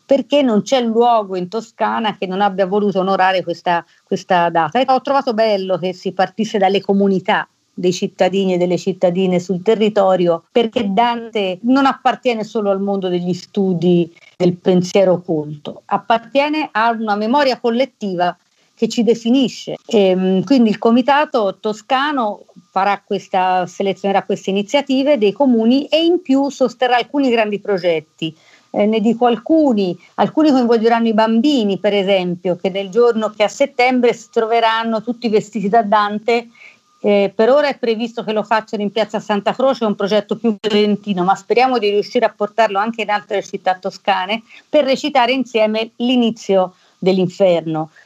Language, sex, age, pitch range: Italian, female, 50-69, 195-245 Hz